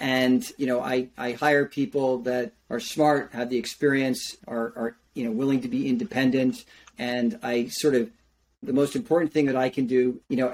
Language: English